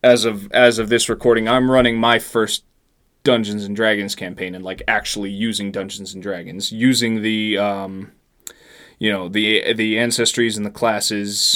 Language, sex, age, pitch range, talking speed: English, male, 20-39, 100-120 Hz, 165 wpm